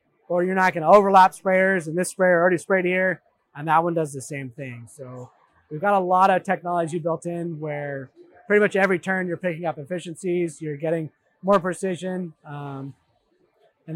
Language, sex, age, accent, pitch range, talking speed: English, male, 20-39, American, 155-185 Hz, 185 wpm